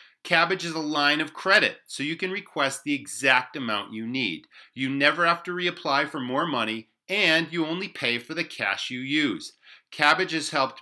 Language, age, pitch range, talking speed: English, 40-59, 120-170 Hz, 195 wpm